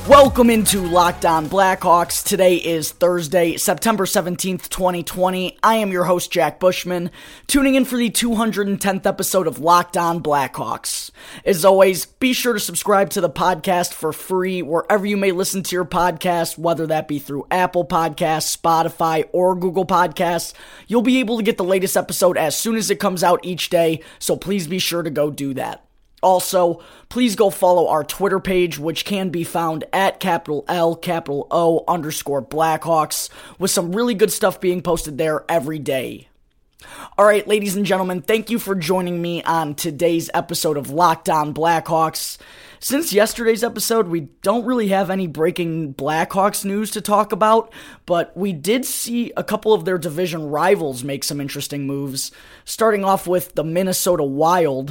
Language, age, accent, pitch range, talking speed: English, 20-39, American, 160-195 Hz, 170 wpm